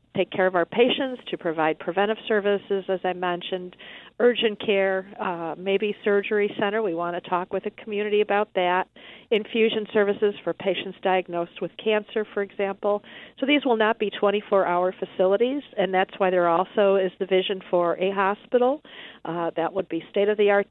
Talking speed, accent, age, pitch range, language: 170 wpm, American, 50-69, 180-210 Hz, English